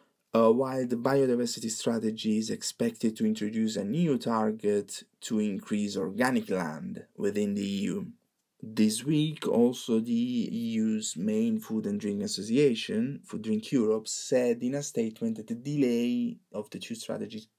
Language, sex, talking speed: English, male, 140 wpm